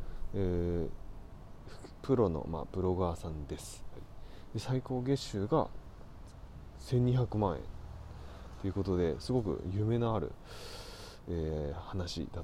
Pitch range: 85-110 Hz